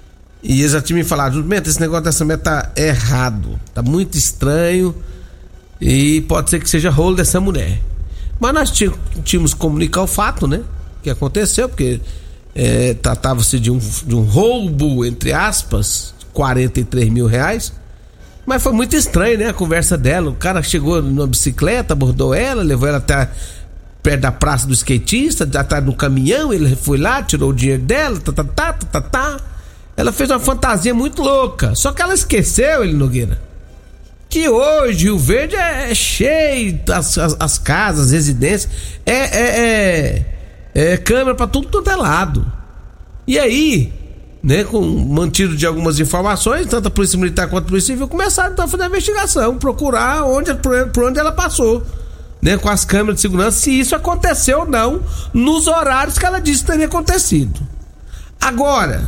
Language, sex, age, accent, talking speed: Portuguese, male, 60-79, Brazilian, 170 wpm